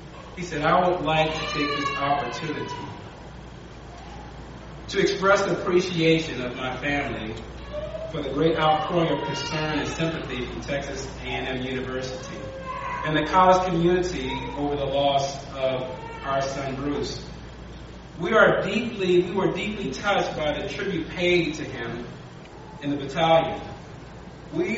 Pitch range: 140-185 Hz